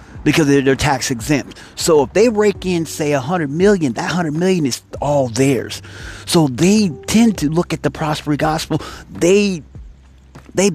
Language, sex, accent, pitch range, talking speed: English, male, American, 120-165 Hz, 165 wpm